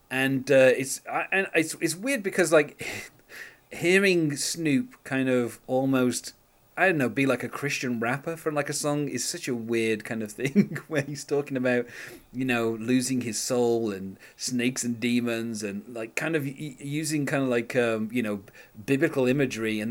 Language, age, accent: English, 30-49, British